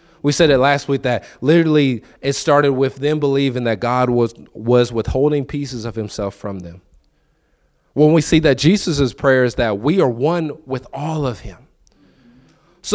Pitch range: 105-140 Hz